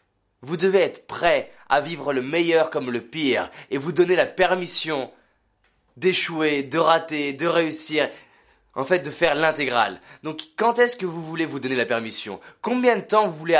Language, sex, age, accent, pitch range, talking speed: French, male, 20-39, French, 135-175 Hz, 180 wpm